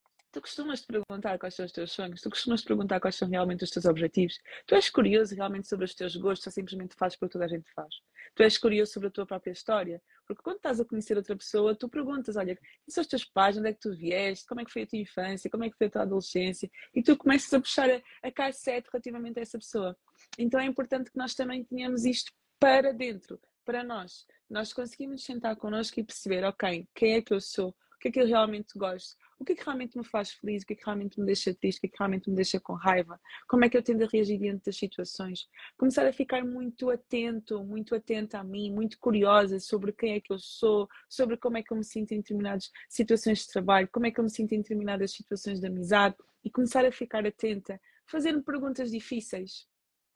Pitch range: 195-245 Hz